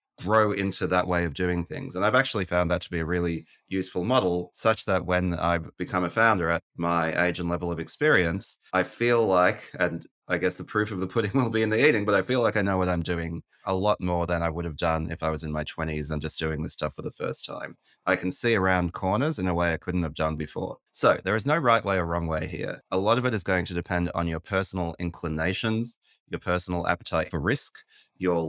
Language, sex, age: English, male, 20-39